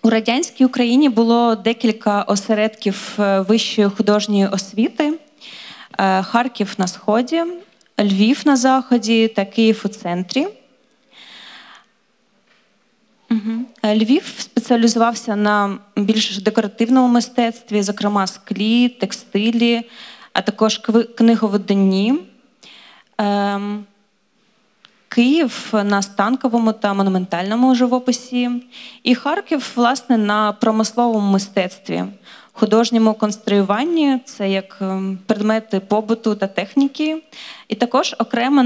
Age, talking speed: 20-39, 85 wpm